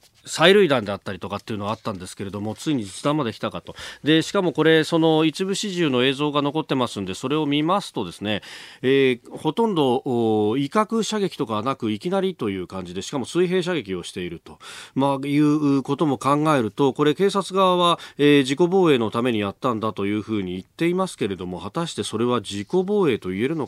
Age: 40-59